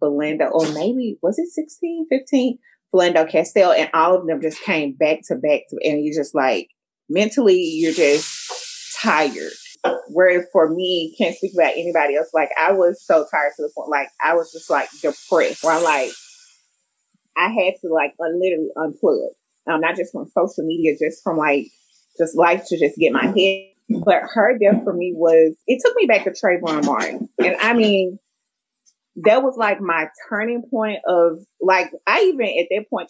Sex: female